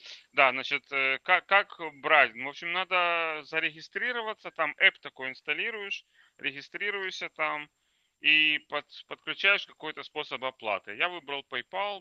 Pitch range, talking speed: 125-175 Hz, 115 wpm